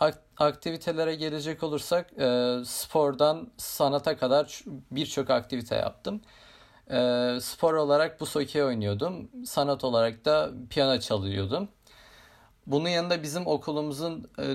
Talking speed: 95 wpm